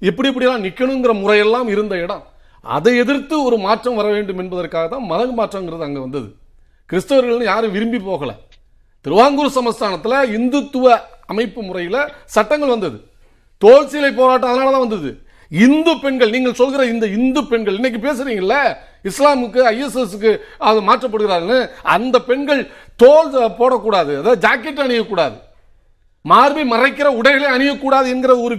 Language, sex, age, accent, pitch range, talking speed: Tamil, male, 40-59, native, 215-275 Hz, 125 wpm